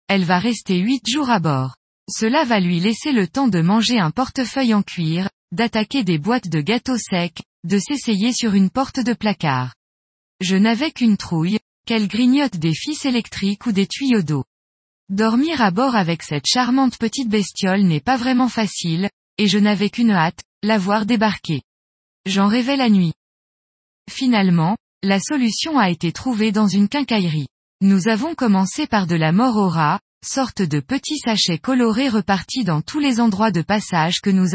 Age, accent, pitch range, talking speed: 20-39, French, 175-245 Hz, 170 wpm